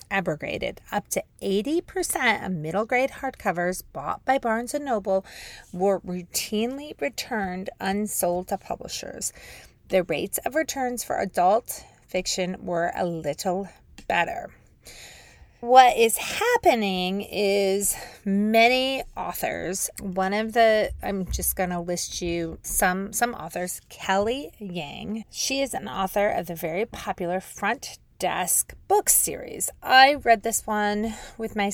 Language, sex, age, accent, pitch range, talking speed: English, female, 30-49, American, 185-245 Hz, 125 wpm